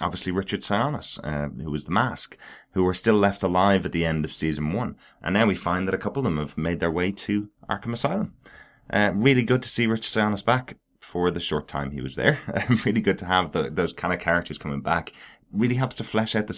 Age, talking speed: 20-39, 245 wpm